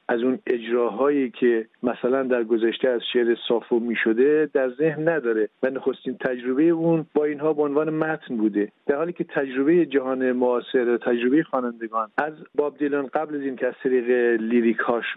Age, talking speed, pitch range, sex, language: 50-69, 160 wpm, 120-150 Hz, male, Persian